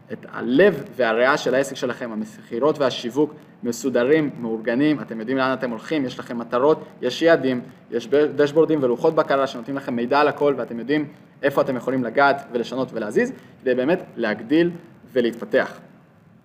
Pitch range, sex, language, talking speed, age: 125-155 Hz, male, Hebrew, 150 wpm, 20-39